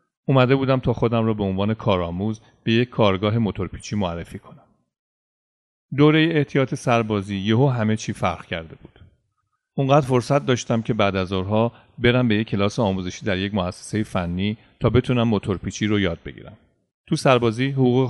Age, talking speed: 40-59, 155 wpm